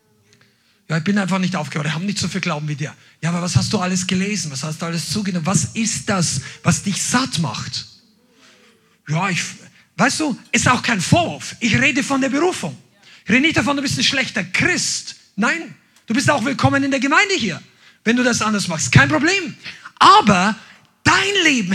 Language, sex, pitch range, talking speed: German, male, 185-235 Hz, 205 wpm